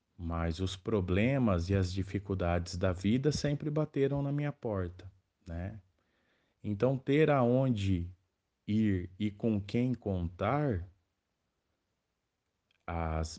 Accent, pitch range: Brazilian, 90-110 Hz